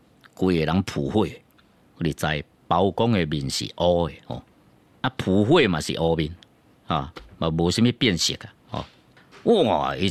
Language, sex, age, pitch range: Chinese, male, 50-69, 85-130 Hz